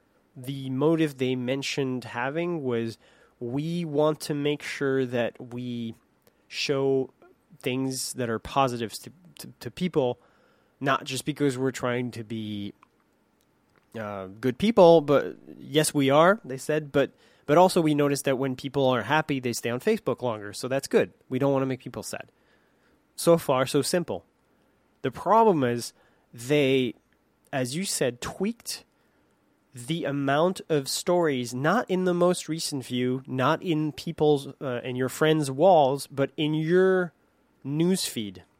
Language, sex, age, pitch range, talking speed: English, male, 20-39, 125-160 Hz, 150 wpm